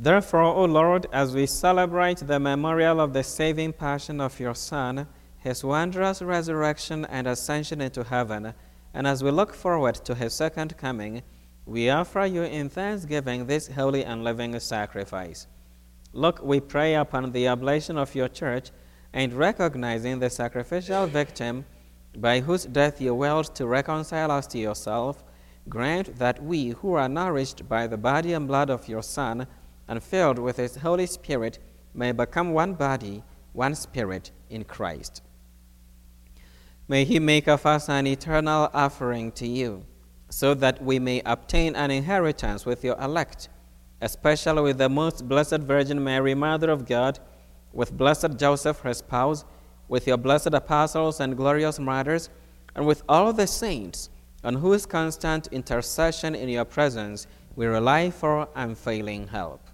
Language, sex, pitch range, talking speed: English, male, 115-155 Hz, 155 wpm